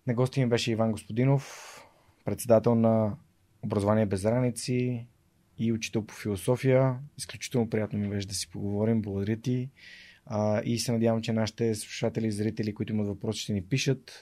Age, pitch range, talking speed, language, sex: 20-39, 105-125 Hz, 160 wpm, Bulgarian, male